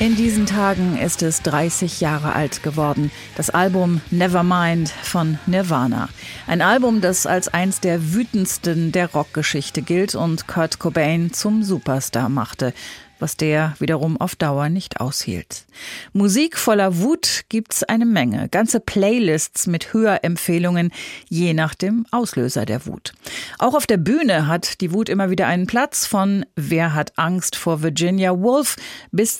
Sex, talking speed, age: female, 145 wpm, 40-59